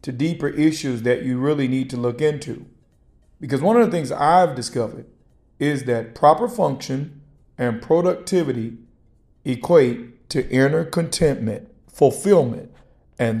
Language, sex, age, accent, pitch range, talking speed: English, male, 50-69, American, 120-165 Hz, 130 wpm